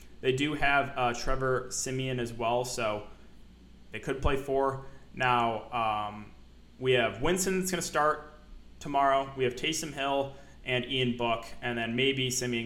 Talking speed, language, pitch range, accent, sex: 160 wpm, English, 120-150 Hz, American, male